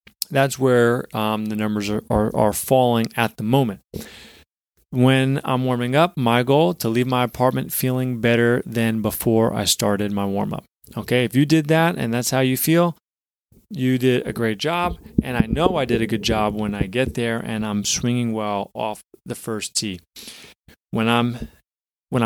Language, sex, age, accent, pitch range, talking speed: English, male, 30-49, American, 110-130 Hz, 185 wpm